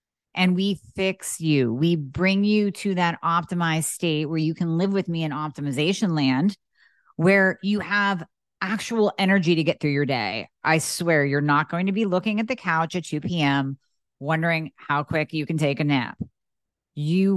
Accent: American